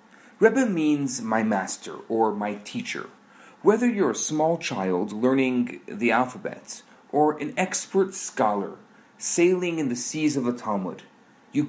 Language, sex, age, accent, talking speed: English, male, 40-59, Canadian, 140 wpm